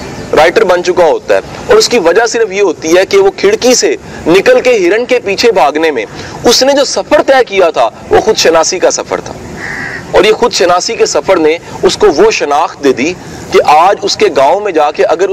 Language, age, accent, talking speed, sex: English, 40-59, Indian, 210 wpm, male